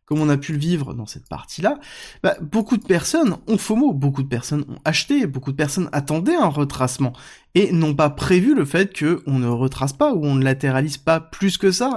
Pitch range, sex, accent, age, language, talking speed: 140-215 Hz, male, French, 20-39, French, 215 wpm